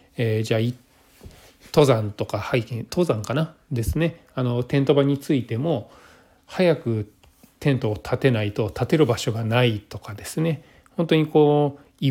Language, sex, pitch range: Japanese, male, 110-145 Hz